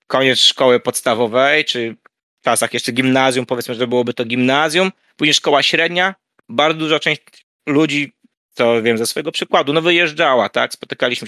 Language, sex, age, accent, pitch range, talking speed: Polish, male, 20-39, native, 135-180 Hz, 155 wpm